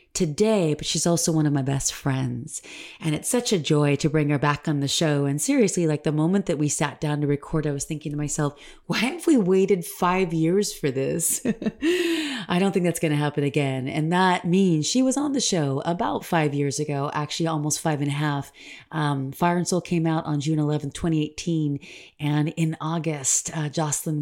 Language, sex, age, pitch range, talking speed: English, female, 30-49, 150-180 Hz, 215 wpm